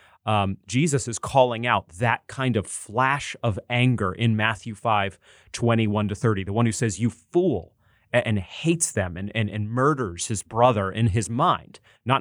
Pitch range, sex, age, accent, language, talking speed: 105-130 Hz, male, 30-49, American, English, 180 wpm